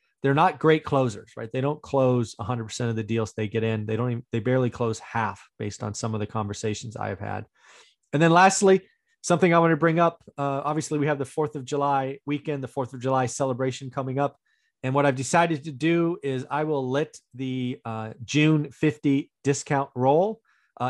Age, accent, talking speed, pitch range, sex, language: 30-49, American, 205 wpm, 115-150 Hz, male, English